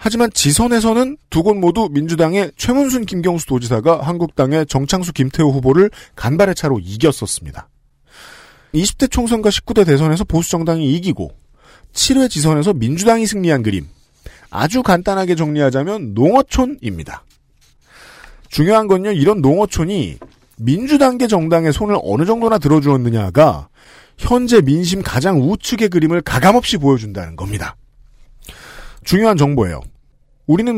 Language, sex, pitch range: Korean, male, 135-205 Hz